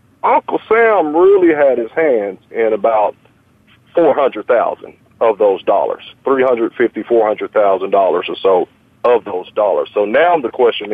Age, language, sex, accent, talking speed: 40-59, English, male, American, 165 wpm